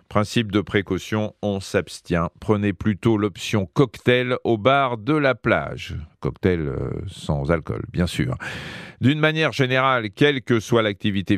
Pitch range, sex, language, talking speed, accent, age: 90-120 Hz, male, French, 135 wpm, French, 40-59